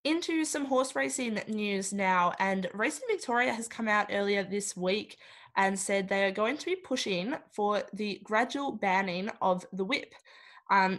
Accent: Australian